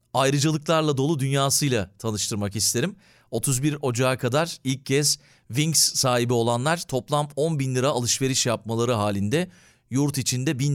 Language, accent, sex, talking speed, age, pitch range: Turkish, native, male, 130 wpm, 40-59, 120-150 Hz